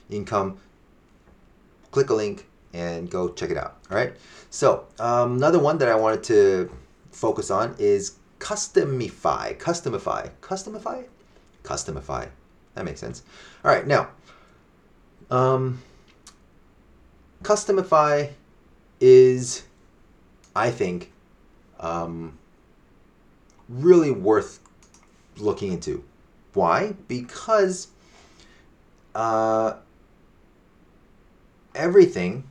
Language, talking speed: English, 85 wpm